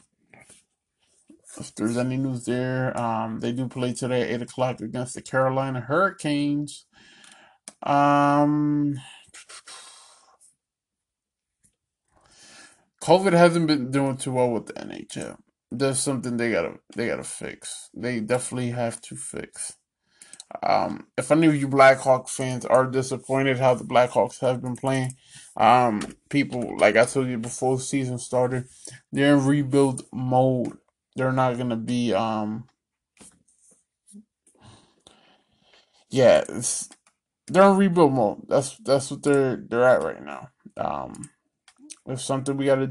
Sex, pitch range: male, 125-140 Hz